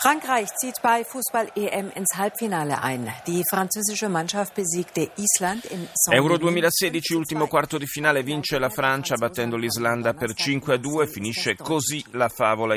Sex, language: male, Italian